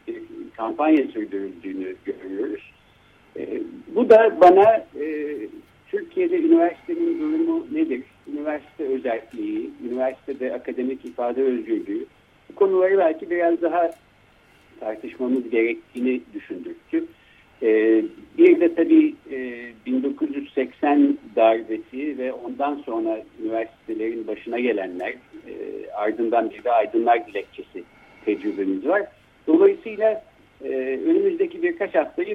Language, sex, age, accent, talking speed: Turkish, male, 60-79, native, 95 wpm